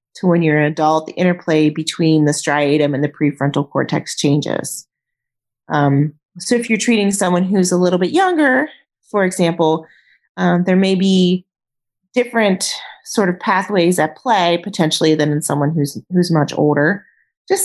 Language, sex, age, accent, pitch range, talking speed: English, female, 30-49, American, 160-200 Hz, 160 wpm